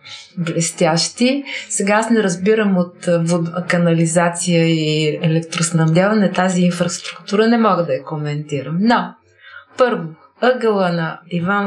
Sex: female